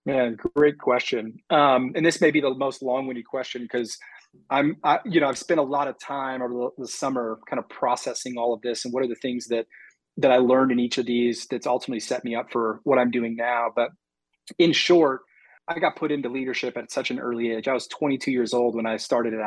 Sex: male